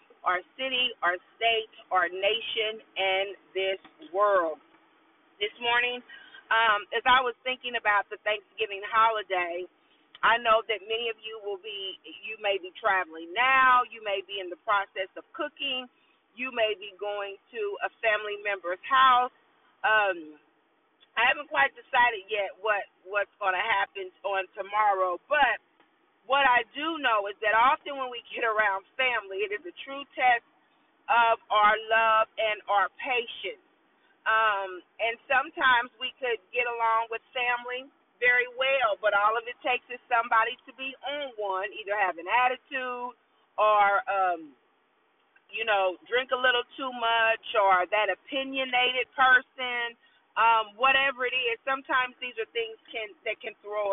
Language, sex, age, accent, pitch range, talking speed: English, female, 40-59, American, 205-265 Hz, 150 wpm